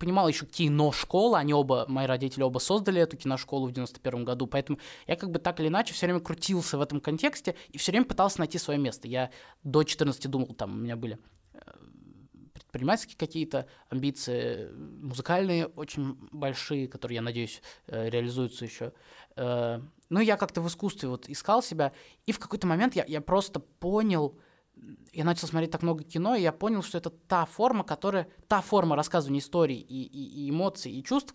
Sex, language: male, Russian